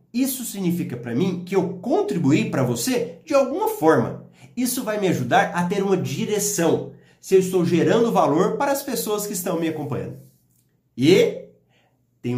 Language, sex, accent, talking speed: Portuguese, male, Brazilian, 165 wpm